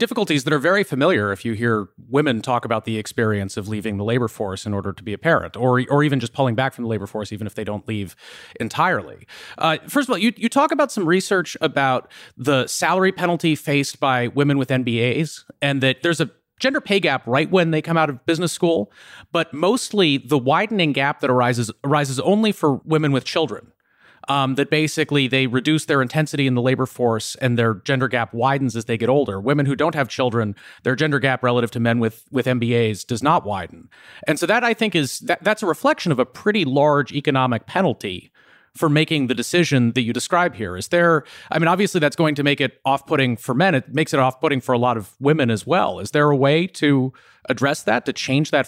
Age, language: 30-49, English